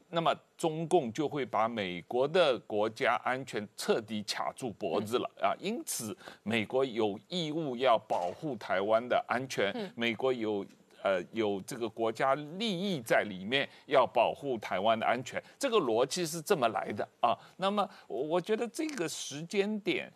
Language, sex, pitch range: Chinese, male, 125-195 Hz